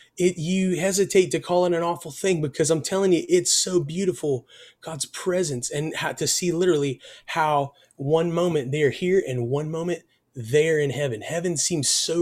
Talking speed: 175 wpm